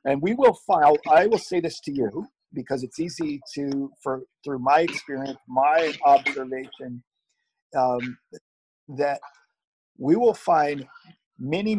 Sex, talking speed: male, 130 wpm